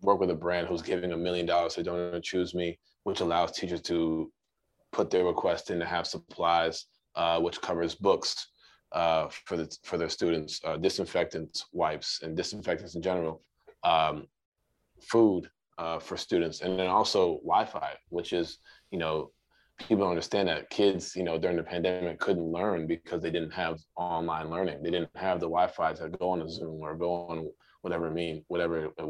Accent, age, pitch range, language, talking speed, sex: American, 20-39, 80-90 Hz, English, 185 wpm, male